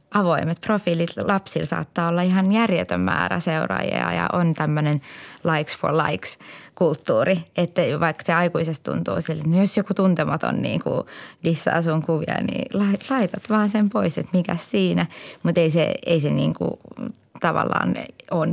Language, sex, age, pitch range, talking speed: Finnish, female, 20-39, 160-195 Hz, 155 wpm